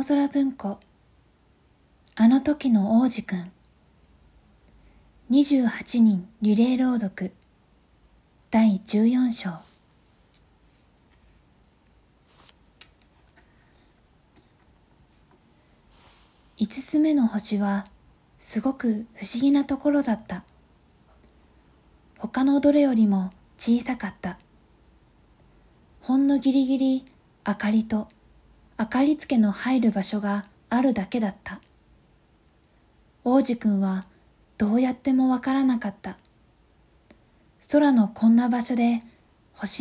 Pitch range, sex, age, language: 205-260 Hz, female, 20-39, Japanese